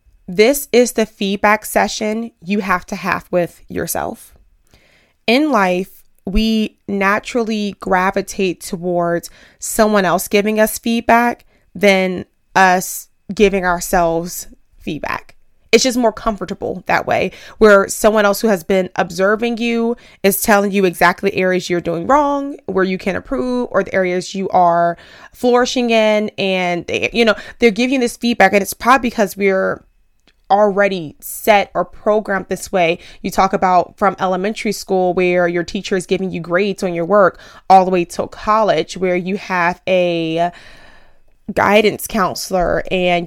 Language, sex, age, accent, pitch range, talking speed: English, female, 20-39, American, 180-215 Hz, 150 wpm